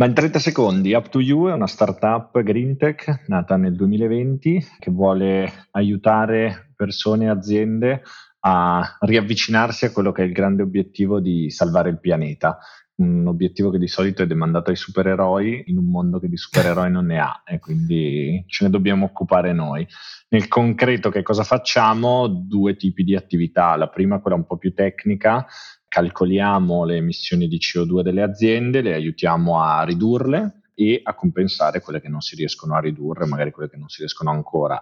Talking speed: 175 wpm